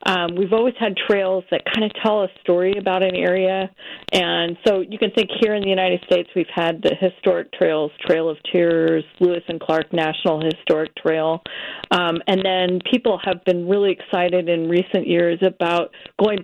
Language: English